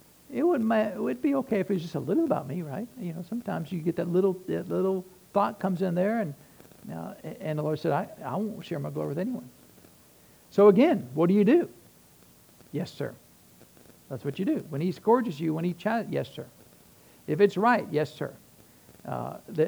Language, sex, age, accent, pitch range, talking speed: English, male, 60-79, American, 140-195 Hz, 210 wpm